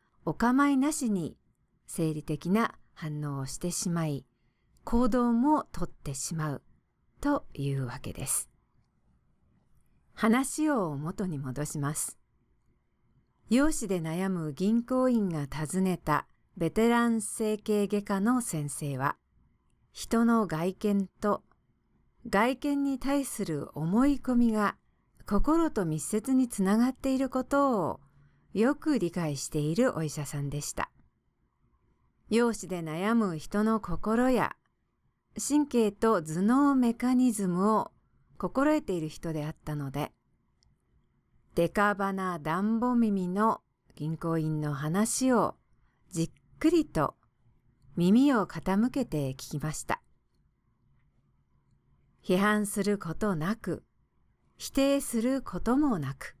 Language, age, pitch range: English, 50-69, 155-235 Hz